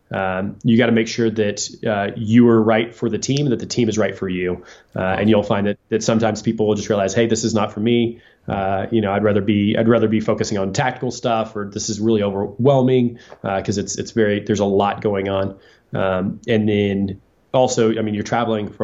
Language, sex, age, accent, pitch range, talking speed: English, male, 20-39, American, 100-115 Hz, 240 wpm